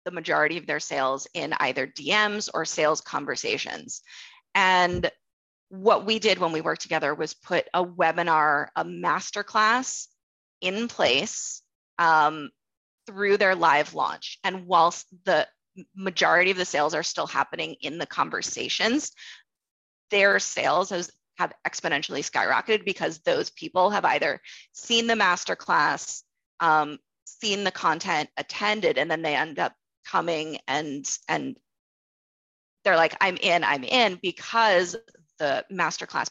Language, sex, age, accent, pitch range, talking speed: English, female, 20-39, American, 155-205 Hz, 135 wpm